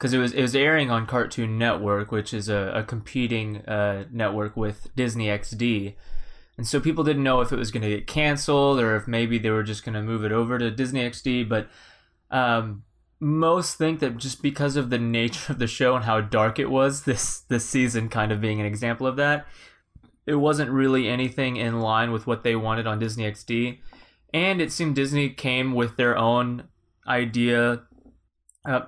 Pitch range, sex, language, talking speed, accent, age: 110-130 Hz, male, English, 200 wpm, American, 20-39